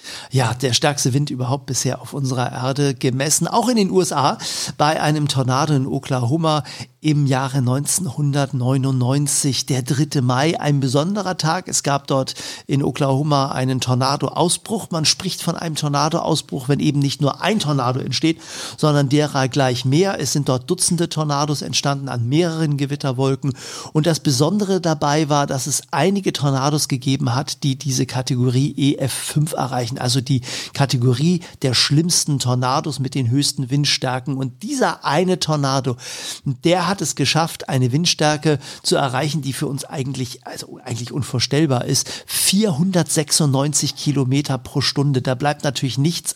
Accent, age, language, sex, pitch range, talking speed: German, 50-69, German, male, 135-160 Hz, 145 wpm